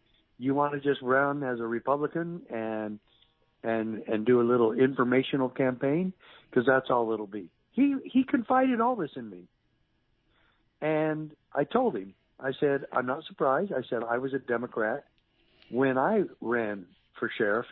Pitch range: 115-140 Hz